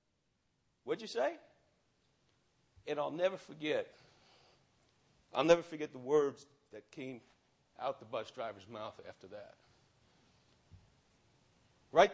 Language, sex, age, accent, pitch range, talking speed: English, male, 60-79, American, 155-230 Hz, 110 wpm